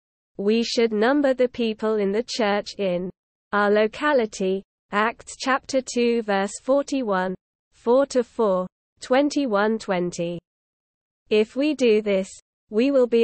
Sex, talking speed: female, 120 wpm